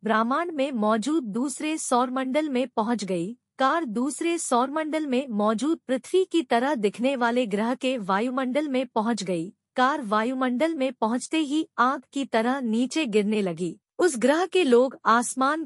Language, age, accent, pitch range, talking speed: Hindi, 50-69, native, 215-275 Hz, 160 wpm